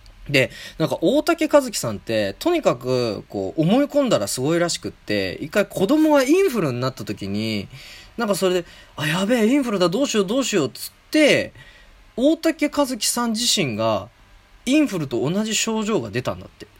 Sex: male